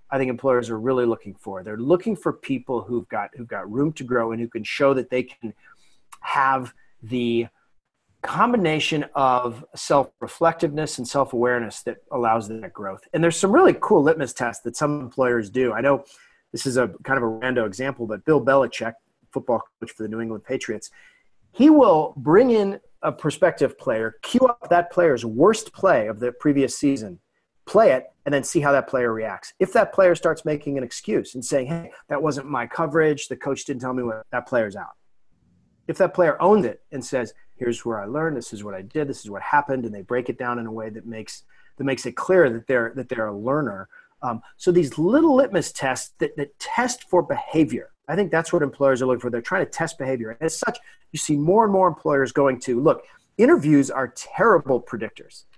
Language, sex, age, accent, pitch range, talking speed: English, male, 30-49, American, 120-160 Hz, 210 wpm